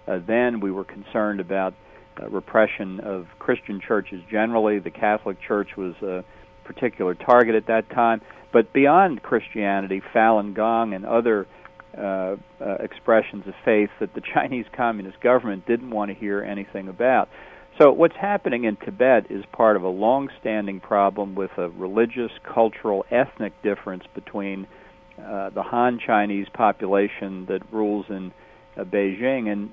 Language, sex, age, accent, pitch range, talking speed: English, male, 50-69, American, 100-115 Hz, 145 wpm